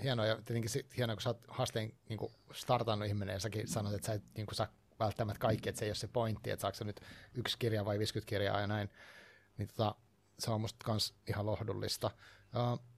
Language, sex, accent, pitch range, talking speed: Finnish, male, native, 105-125 Hz, 215 wpm